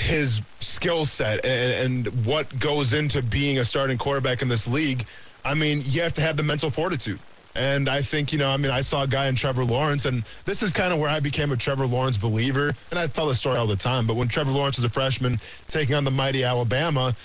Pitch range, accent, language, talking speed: 125-155 Hz, American, English, 245 wpm